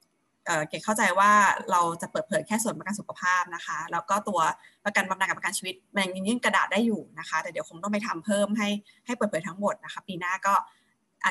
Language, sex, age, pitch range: Thai, female, 20-39, 180-220 Hz